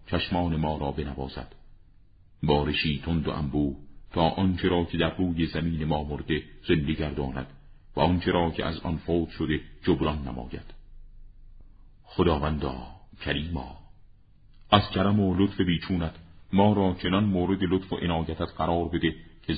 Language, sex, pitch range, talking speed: Persian, male, 75-90 Hz, 140 wpm